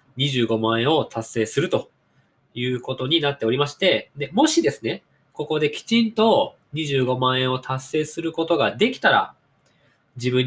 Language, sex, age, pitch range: Japanese, male, 20-39, 120-190 Hz